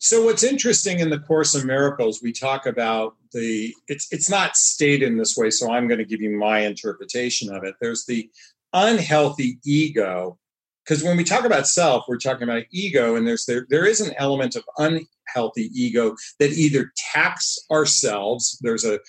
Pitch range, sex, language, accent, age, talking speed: 120-165 Hz, male, English, American, 40-59, 185 wpm